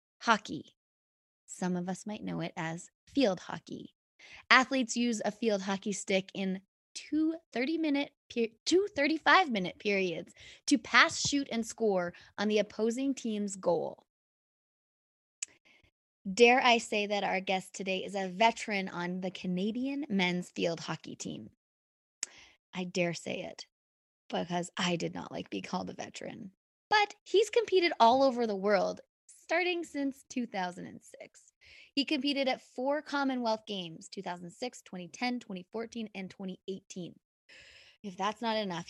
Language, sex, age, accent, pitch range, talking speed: English, female, 20-39, American, 185-245 Hz, 135 wpm